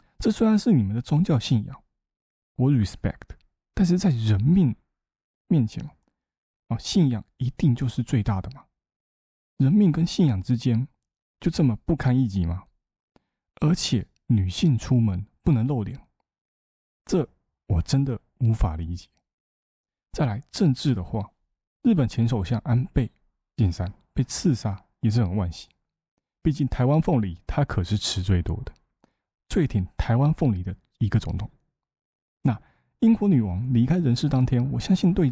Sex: male